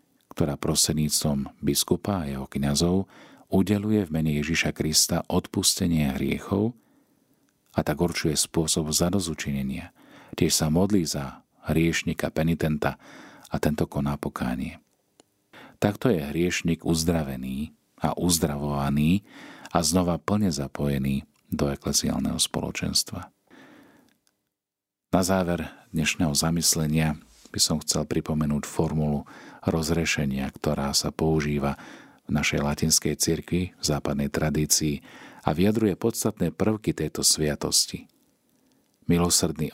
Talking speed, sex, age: 100 wpm, male, 40-59